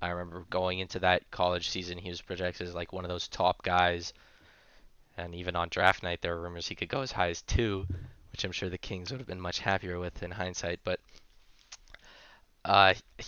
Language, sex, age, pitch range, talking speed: English, male, 10-29, 90-100 Hz, 210 wpm